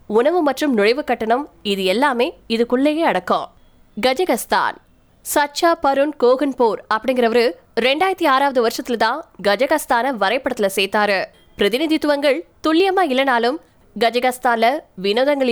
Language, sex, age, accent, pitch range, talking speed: Tamil, female, 20-39, native, 220-290 Hz, 95 wpm